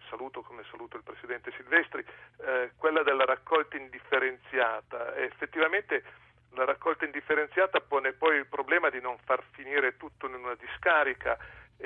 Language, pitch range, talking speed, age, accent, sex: Italian, 125-145 Hz, 145 wpm, 40-59, native, male